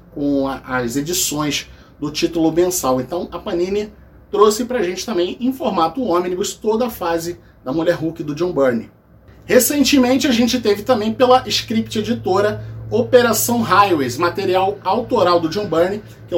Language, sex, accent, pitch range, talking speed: Portuguese, male, Brazilian, 160-225 Hz, 155 wpm